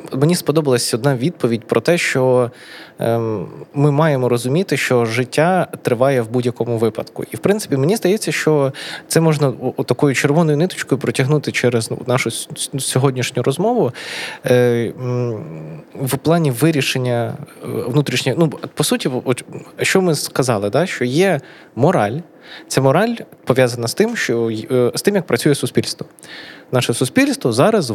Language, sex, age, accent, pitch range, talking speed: Ukrainian, male, 20-39, native, 130-180 Hz, 125 wpm